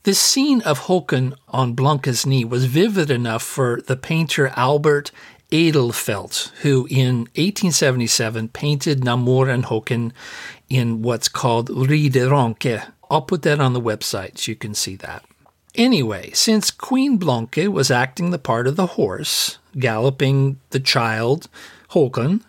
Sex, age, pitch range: male, 50-69, 120-155 Hz